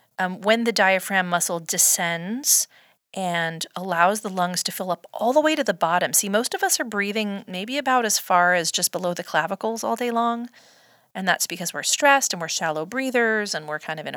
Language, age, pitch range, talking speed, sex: English, 30-49, 175-225 Hz, 215 wpm, female